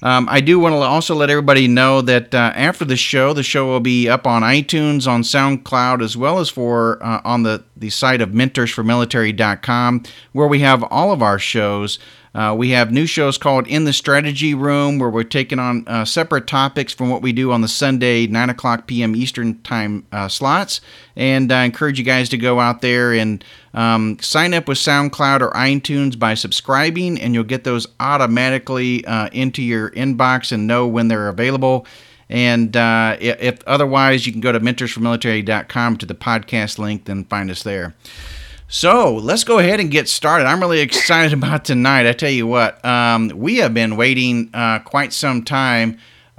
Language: English